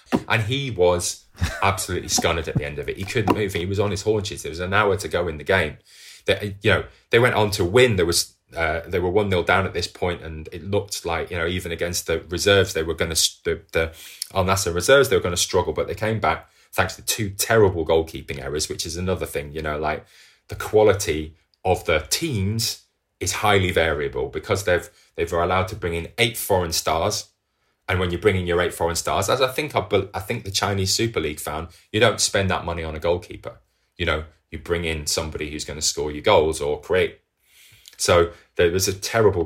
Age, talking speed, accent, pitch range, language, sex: 20-39, 230 wpm, British, 80-105 Hz, English, male